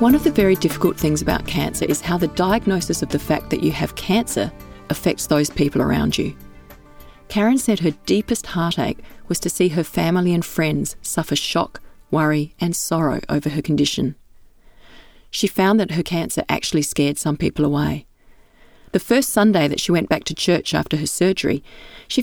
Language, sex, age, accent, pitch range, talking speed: English, female, 40-59, Australian, 150-195 Hz, 180 wpm